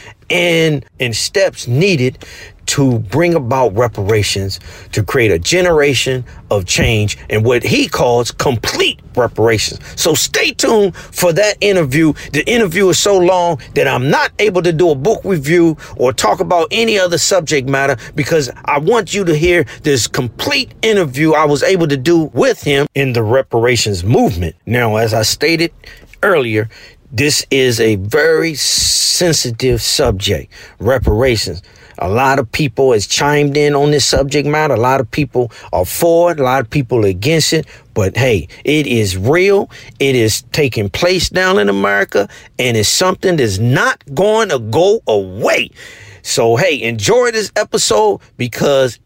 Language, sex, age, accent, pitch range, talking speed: English, male, 40-59, American, 115-170 Hz, 160 wpm